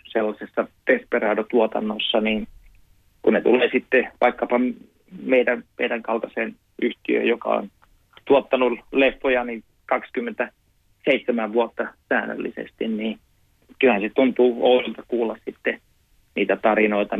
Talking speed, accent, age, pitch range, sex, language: 100 wpm, native, 30-49, 105-125 Hz, male, Finnish